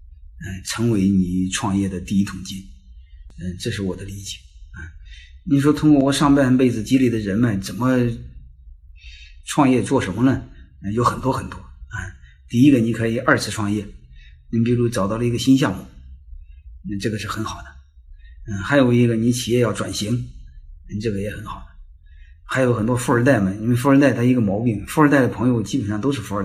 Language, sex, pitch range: Chinese, male, 80-120 Hz